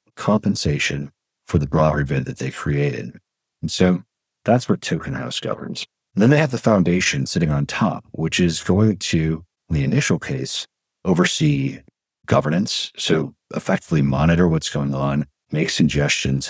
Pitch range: 75-90 Hz